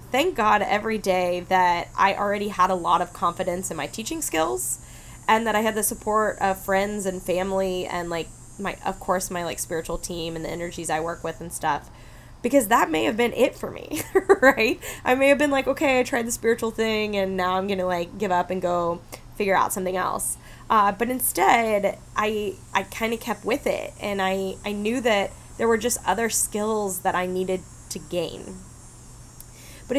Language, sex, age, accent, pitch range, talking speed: English, female, 10-29, American, 180-225 Hz, 205 wpm